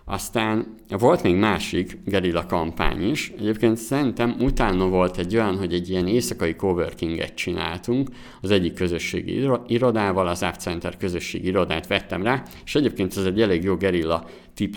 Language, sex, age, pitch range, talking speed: Hungarian, male, 50-69, 85-105 Hz, 155 wpm